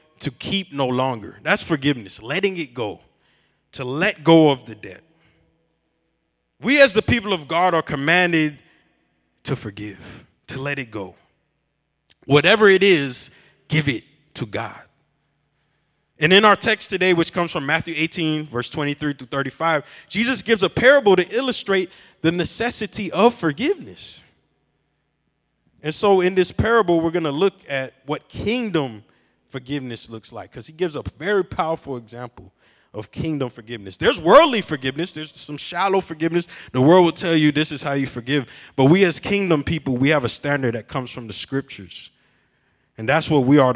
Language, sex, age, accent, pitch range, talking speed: English, male, 20-39, American, 135-185 Hz, 165 wpm